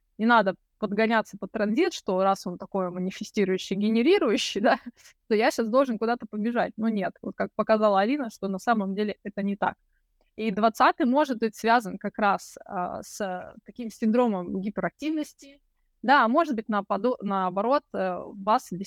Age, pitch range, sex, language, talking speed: 20-39, 195-245 Hz, female, Russian, 160 wpm